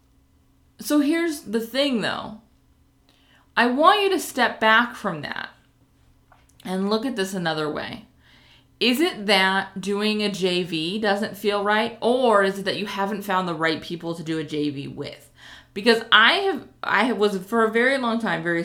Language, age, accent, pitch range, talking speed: English, 20-39, American, 170-230 Hz, 175 wpm